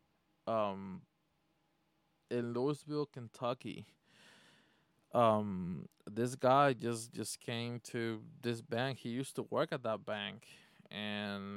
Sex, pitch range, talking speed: male, 115-155 Hz, 110 wpm